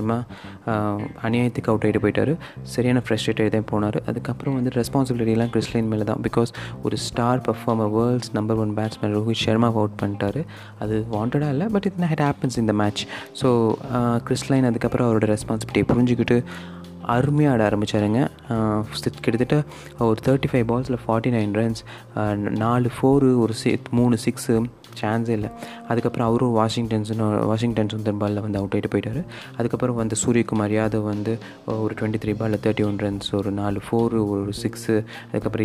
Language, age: Tamil, 20-39